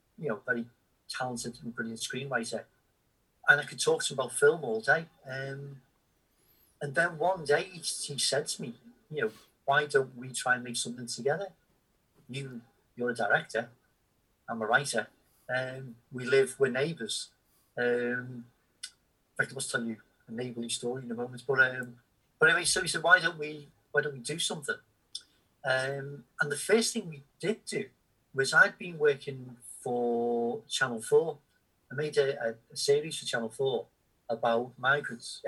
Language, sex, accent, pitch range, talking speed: English, male, British, 120-150 Hz, 175 wpm